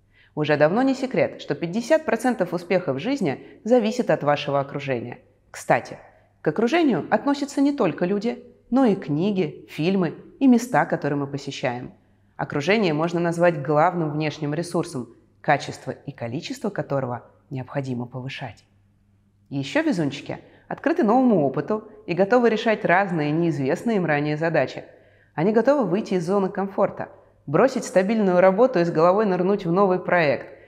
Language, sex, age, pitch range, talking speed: Russian, female, 30-49, 135-215 Hz, 135 wpm